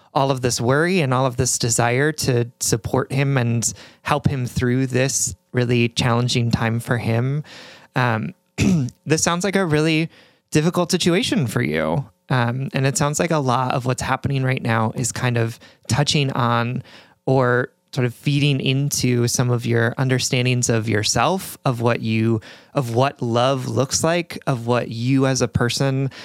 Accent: American